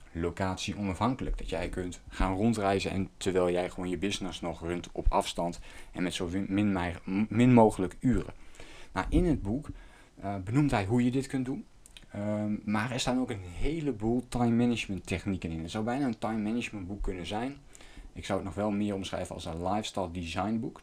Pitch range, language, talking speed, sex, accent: 95-110 Hz, Dutch, 190 wpm, male, Dutch